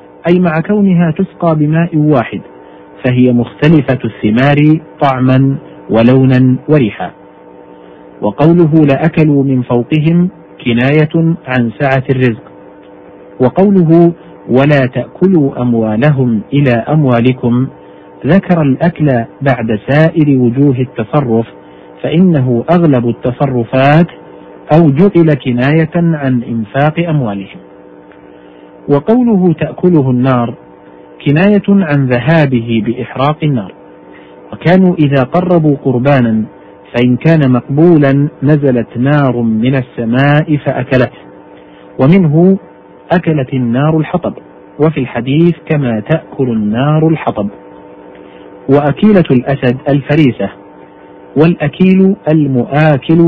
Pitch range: 120-160 Hz